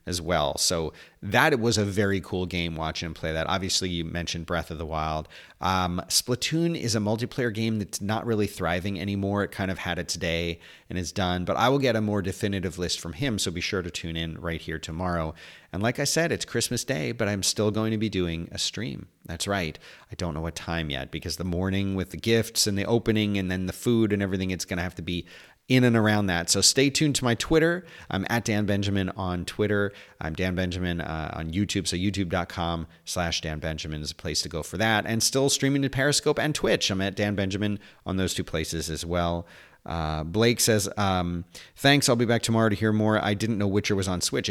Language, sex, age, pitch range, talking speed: English, male, 40-59, 85-110 Hz, 235 wpm